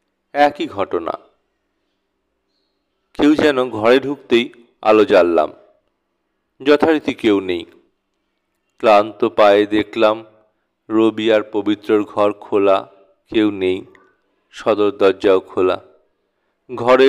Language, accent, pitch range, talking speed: Bengali, native, 105-130 Hz, 90 wpm